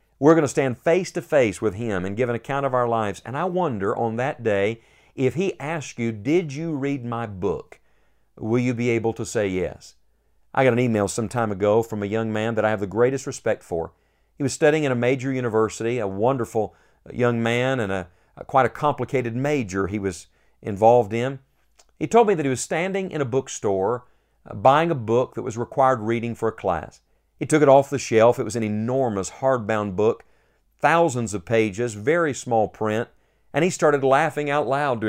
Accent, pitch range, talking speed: American, 110-140 Hz, 210 wpm